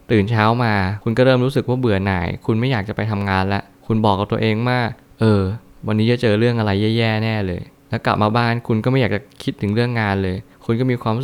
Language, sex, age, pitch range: Thai, male, 20-39, 100-120 Hz